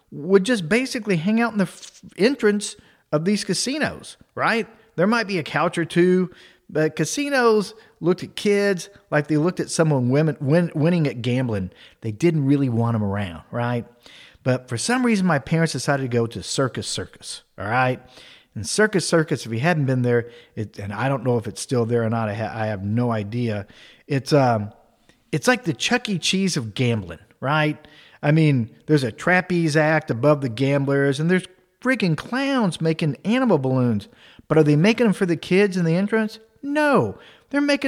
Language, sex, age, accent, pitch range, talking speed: English, male, 40-59, American, 130-190 Hz, 195 wpm